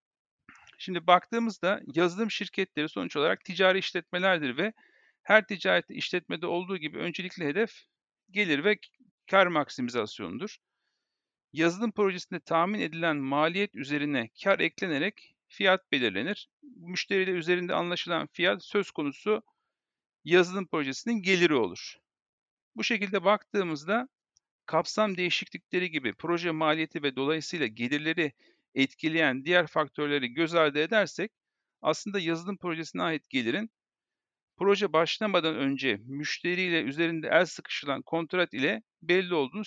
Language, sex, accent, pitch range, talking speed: Turkish, male, native, 160-210 Hz, 110 wpm